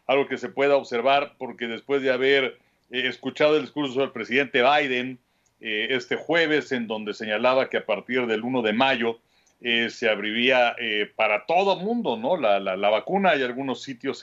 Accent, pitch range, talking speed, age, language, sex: Mexican, 115-140 Hz, 180 wpm, 40-59, Spanish, male